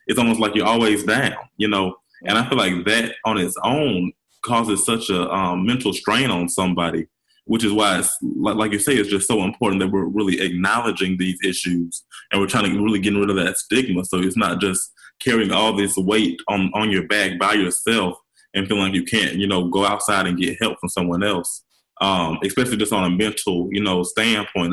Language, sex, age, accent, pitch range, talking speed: English, male, 20-39, American, 95-110 Hz, 215 wpm